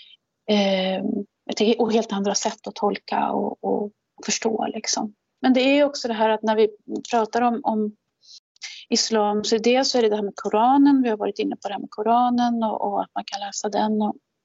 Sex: female